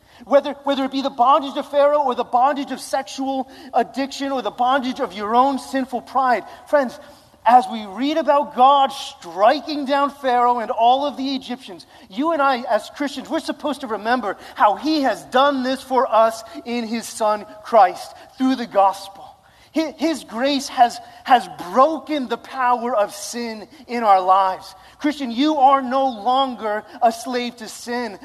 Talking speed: 170 wpm